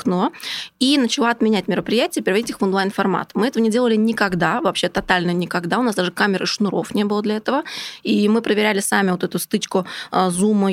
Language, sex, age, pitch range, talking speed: Russian, female, 20-39, 185-220 Hz, 185 wpm